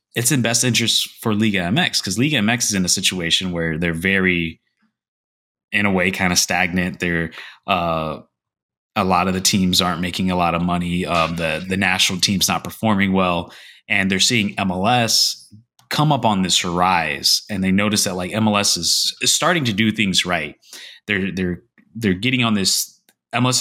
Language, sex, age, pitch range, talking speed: English, male, 20-39, 90-105 Hz, 185 wpm